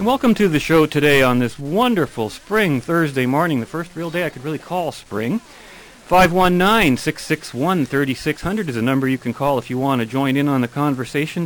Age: 40-59